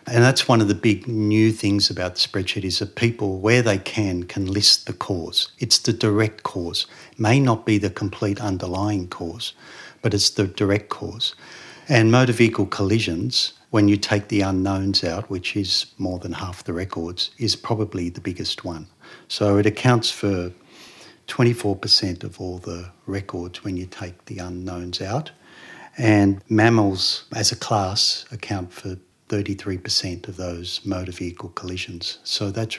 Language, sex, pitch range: English, male, 90-105 Hz